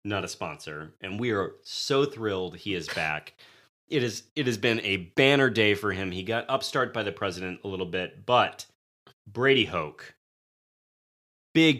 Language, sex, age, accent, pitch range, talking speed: English, male, 30-49, American, 90-125 Hz, 175 wpm